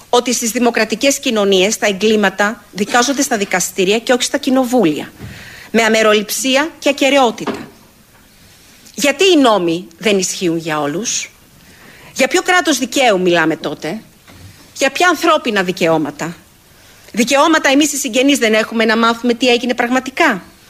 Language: Greek